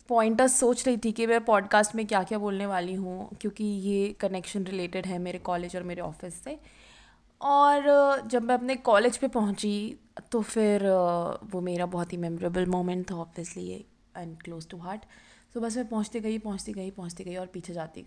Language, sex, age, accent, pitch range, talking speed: Hindi, female, 20-39, native, 180-225 Hz, 190 wpm